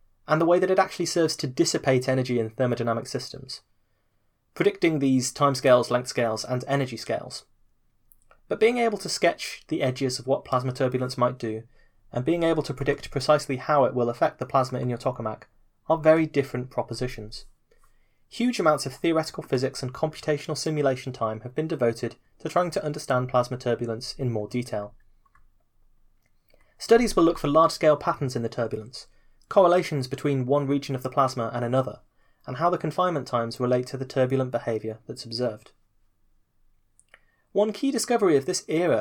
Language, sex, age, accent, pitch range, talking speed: English, male, 30-49, British, 120-155 Hz, 170 wpm